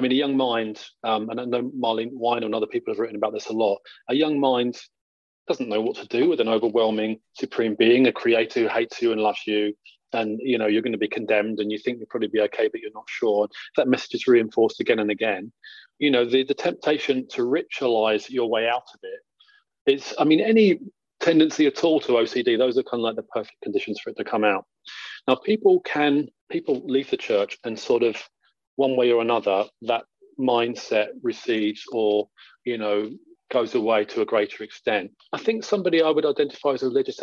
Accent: British